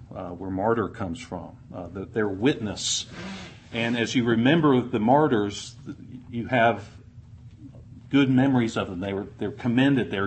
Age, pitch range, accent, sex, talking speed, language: 50-69, 115-135 Hz, American, male, 150 wpm, English